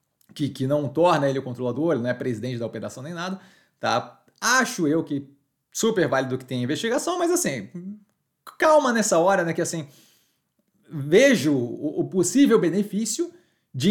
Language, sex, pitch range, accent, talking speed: Portuguese, male, 145-200 Hz, Brazilian, 165 wpm